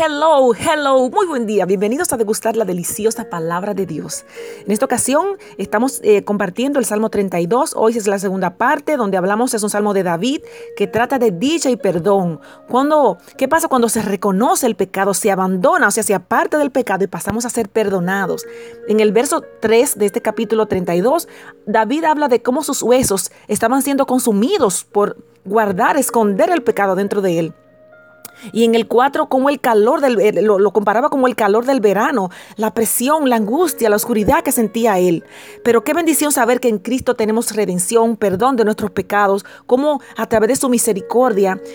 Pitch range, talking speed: 205-260 Hz, 185 wpm